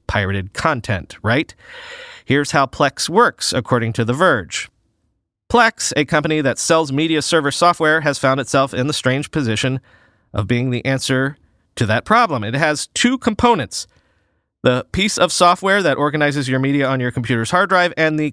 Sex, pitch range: male, 125-185 Hz